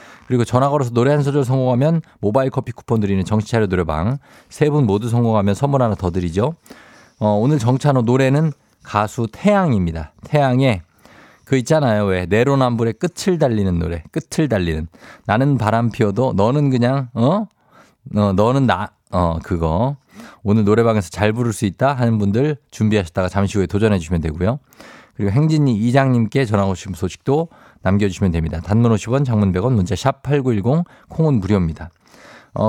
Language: Korean